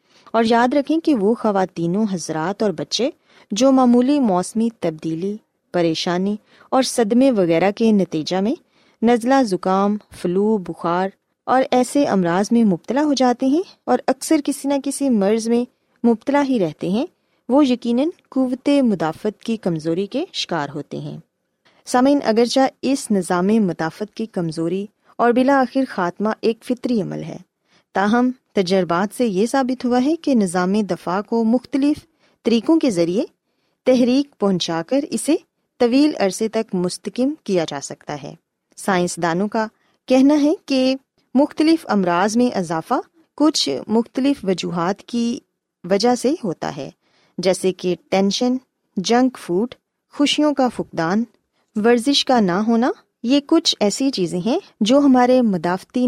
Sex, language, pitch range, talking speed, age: female, Urdu, 185-265 Hz, 140 wpm, 20-39